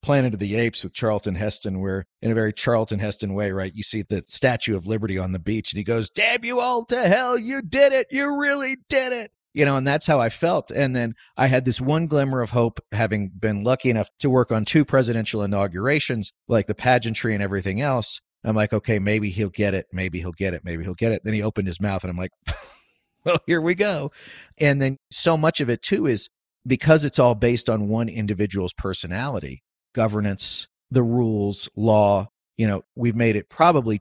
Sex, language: male, English